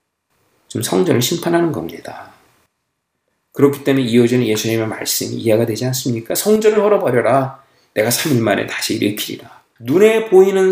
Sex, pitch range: male, 120-180 Hz